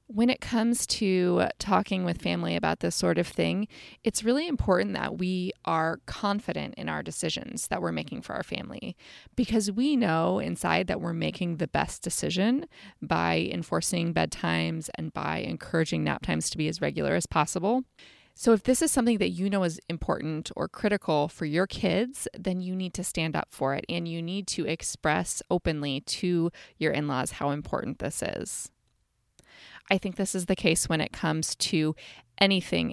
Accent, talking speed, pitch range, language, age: American, 180 wpm, 160-215 Hz, English, 20-39